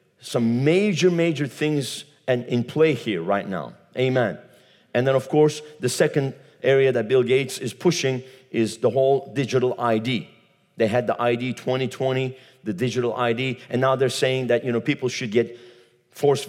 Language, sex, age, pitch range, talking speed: English, male, 50-69, 125-175 Hz, 170 wpm